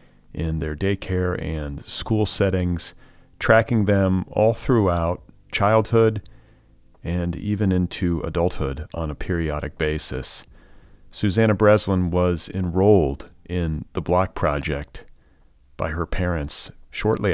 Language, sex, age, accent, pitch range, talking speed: English, male, 40-59, American, 75-95 Hz, 105 wpm